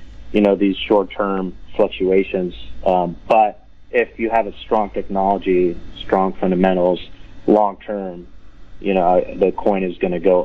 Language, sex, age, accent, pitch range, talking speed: English, male, 30-49, American, 95-105 Hz, 140 wpm